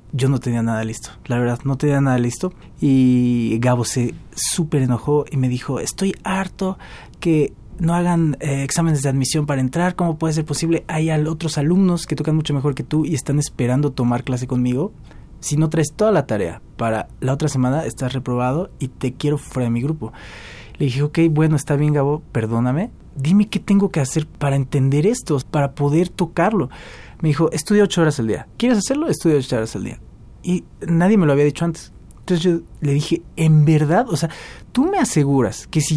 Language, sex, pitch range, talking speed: Spanish, male, 125-165 Hz, 200 wpm